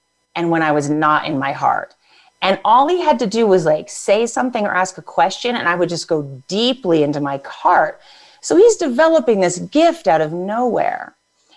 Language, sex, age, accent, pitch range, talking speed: English, female, 40-59, American, 160-215 Hz, 200 wpm